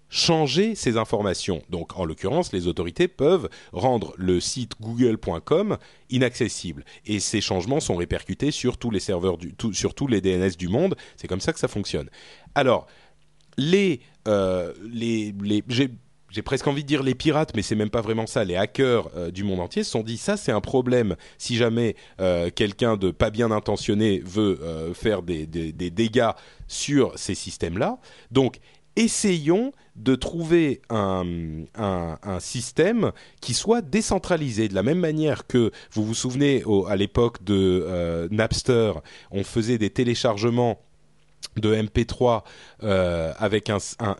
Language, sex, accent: French, male, French